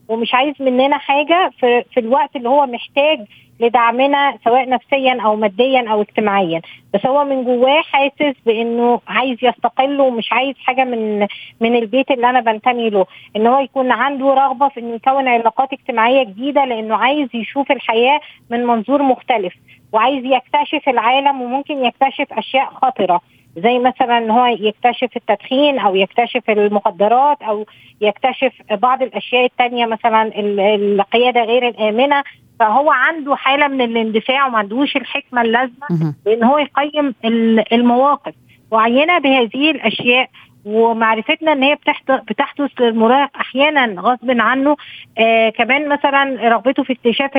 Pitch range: 225-275 Hz